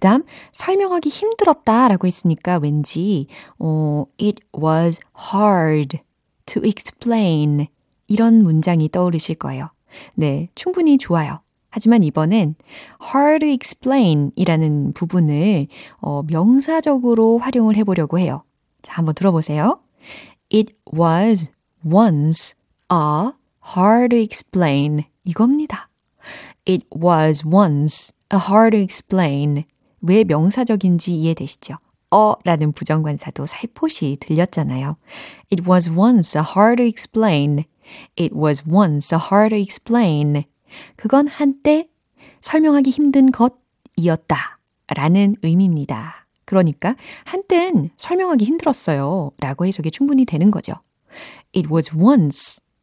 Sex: female